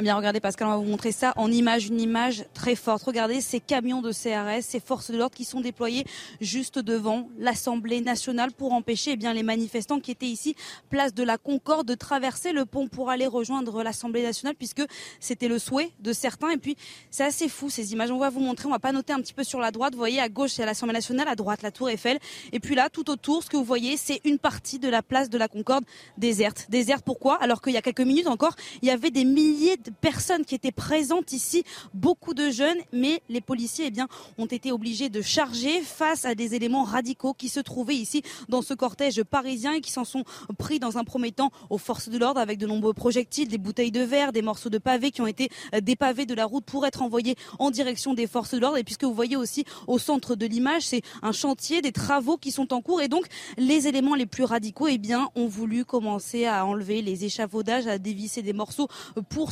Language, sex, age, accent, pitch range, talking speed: French, female, 20-39, French, 230-275 Hz, 240 wpm